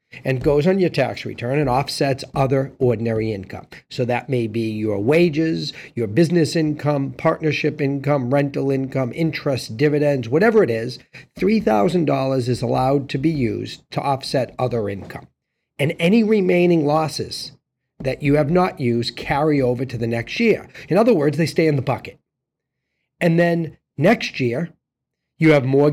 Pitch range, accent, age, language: 130-170 Hz, American, 50-69, English